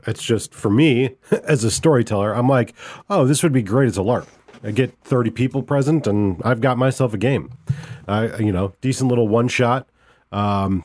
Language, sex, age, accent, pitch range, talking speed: English, male, 40-59, American, 105-135 Hz, 195 wpm